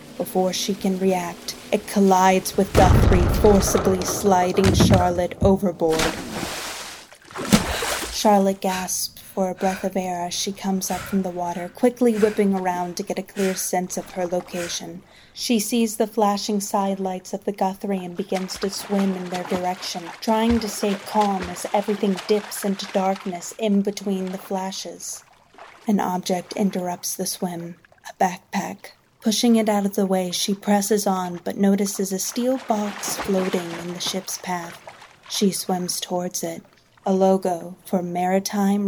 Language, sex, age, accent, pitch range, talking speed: English, female, 30-49, American, 180-200 Hz, 155 wpm